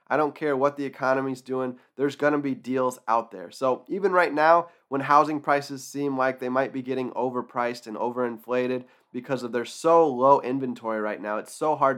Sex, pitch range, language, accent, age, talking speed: male, 120-145 Hz, English, American, 20-39, 205 wpm